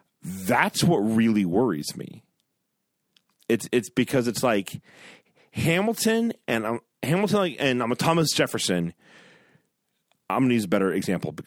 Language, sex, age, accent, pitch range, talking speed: English, male, 40-59, American, 110-135 Hz, 135 wpm